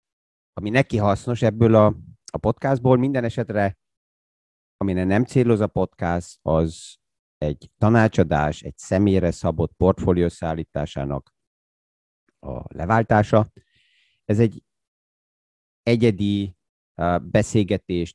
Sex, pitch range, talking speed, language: male, 85-115 Hz, 90 wpm, Hungarian